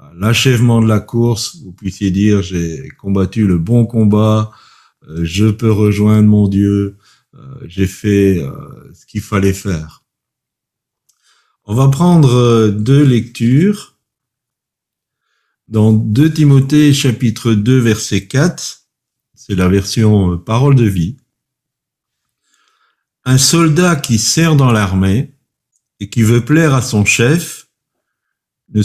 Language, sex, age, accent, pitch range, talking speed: French, male, 50-69, French, 100-135 Hz, 115 wpm